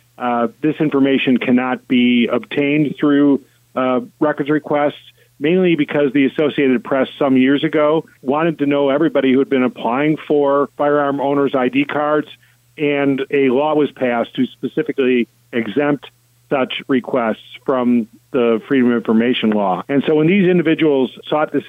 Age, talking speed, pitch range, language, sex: 50-69, 150 wpm, 125-150 Hz, English, male